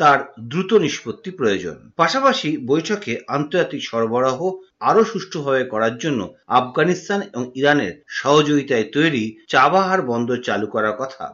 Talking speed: 120 wpm